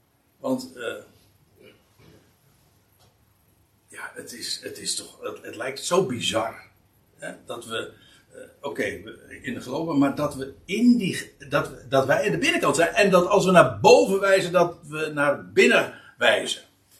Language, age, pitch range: Dutch, 60-79, 135-205 Hz